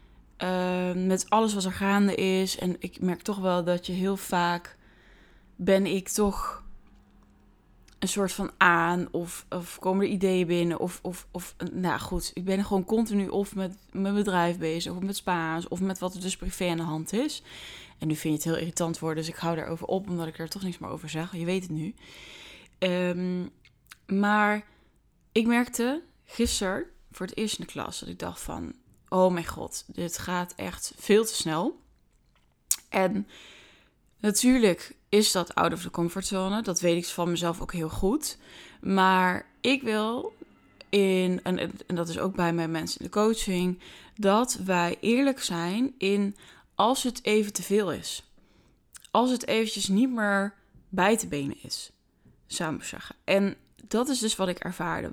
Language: Dutch